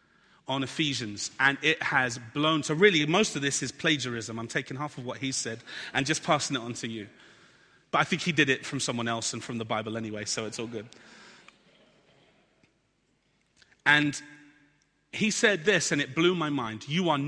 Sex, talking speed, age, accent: male, 195 wpm, 30-49, British